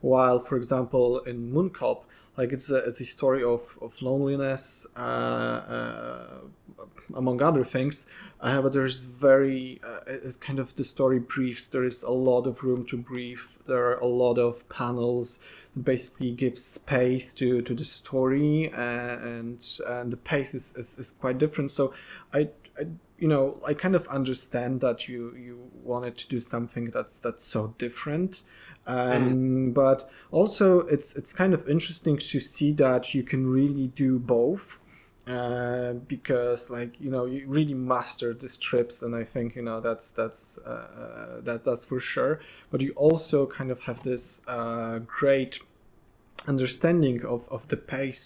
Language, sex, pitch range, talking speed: Polish, male, 120-140 Hz, 165 wpm